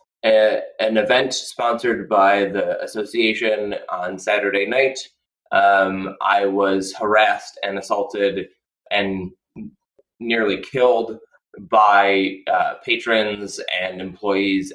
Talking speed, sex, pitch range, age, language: 95 wpm, male, 100-125 Hz, 20-39, English